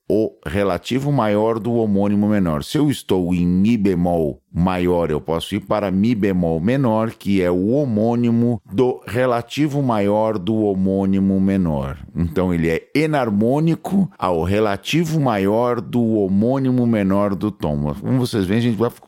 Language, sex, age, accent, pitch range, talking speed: Portuguese, male, 50-69, Brazilian, 90-120 Hz, 150 wpm